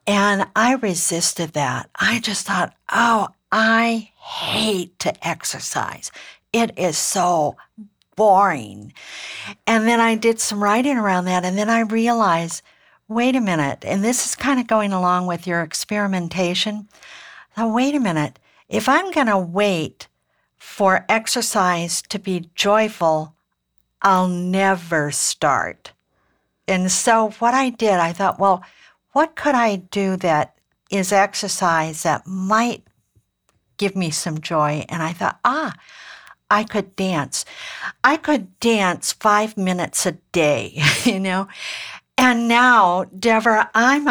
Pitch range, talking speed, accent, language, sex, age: 175-225 Hz, 135 wpm, American, English, female, 60-79